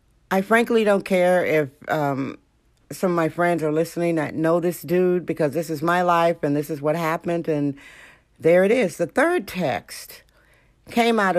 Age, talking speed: 60-79, 185 wpm